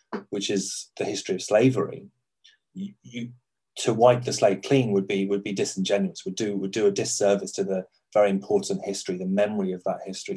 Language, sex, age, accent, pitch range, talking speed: English, male, 30-49, British, 95-130 Hz, 195 wpm